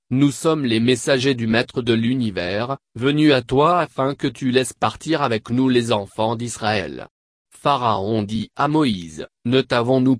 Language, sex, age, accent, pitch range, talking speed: French, male, 40-59, French, 115-140 Hz, 160 wpm